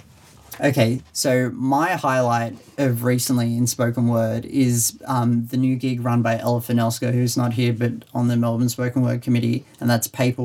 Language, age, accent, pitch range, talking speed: English, 30-49, Australian, 120-130 Hz, 180 wpm